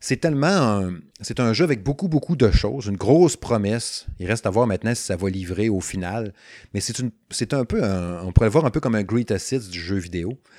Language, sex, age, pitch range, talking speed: French, male, 30-49, 95-115 Hz, 255 wpm